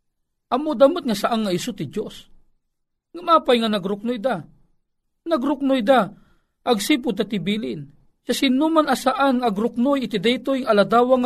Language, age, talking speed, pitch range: Filipino, 40-59, 105 wpm, 205-275 Hz